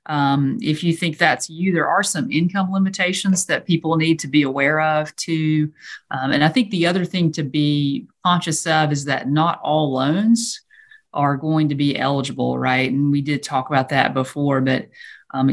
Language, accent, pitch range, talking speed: English, American, 140-165 Hz, 195 wpm